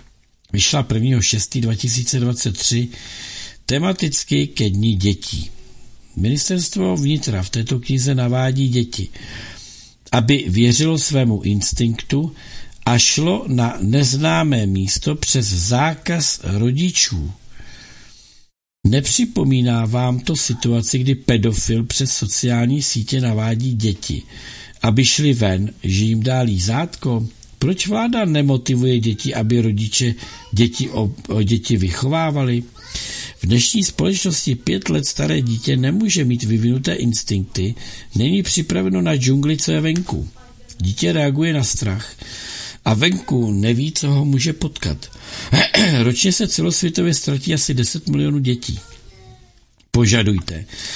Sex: male